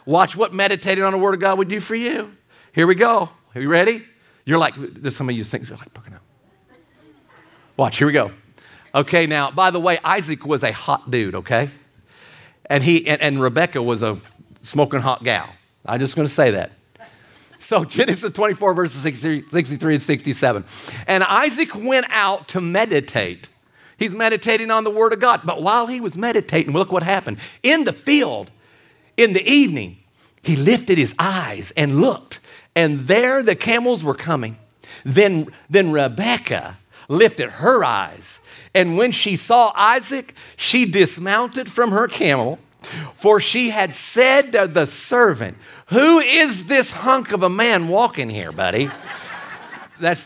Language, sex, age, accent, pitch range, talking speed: English, male, 50-69, American, 140-225 Hz, 165 wpm